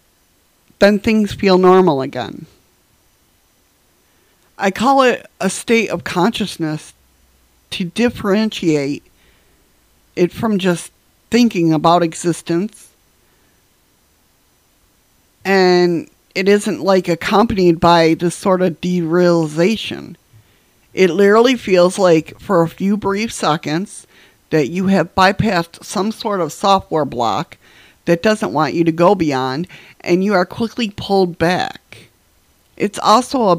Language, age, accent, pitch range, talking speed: English, 50-69, American, 160-200 Hz, 115 wpm